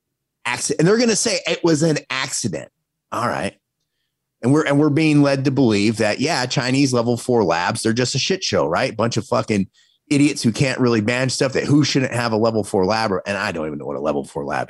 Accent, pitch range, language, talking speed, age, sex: American, 115-150 Hz, English, 235 wpm, 30-49, male